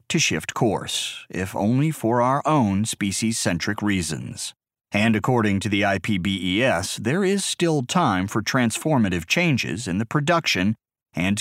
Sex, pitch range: male, 100-135 Hz